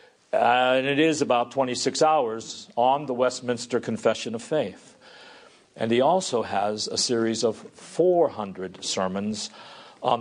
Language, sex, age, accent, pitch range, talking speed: English, male, 50-69, American, 120-180 Hz, 135 wpm